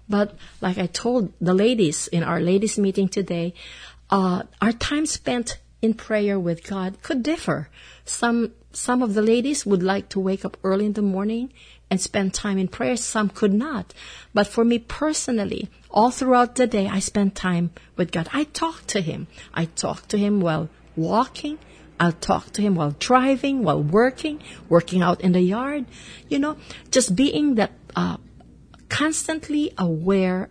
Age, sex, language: 50-69, female, English